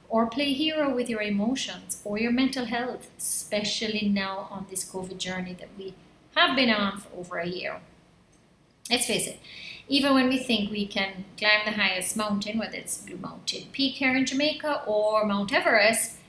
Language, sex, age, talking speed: English, female, 30-49, 180 wpm